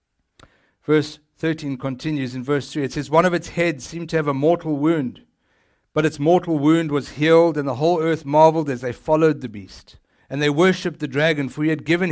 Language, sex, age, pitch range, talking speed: English, male, 60-79, 135-170 Hz, 215 wpm